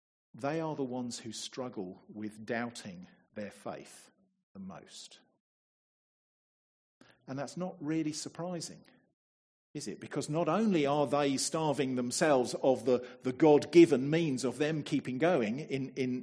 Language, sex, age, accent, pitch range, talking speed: English, male, 50-69, British, 130-190 Hz, 135 wpm